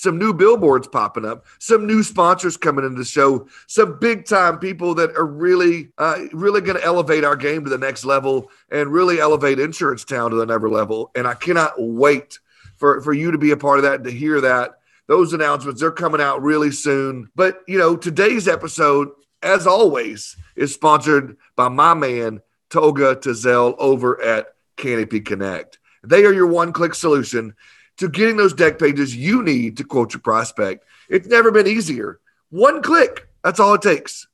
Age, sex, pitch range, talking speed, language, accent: 40-59, male, 130-175 Hz, 185 wpm, English, American